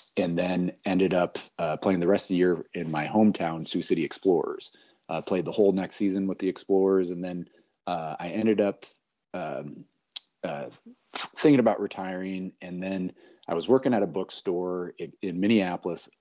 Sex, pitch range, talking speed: male, 90-100 Hz, 180 wpm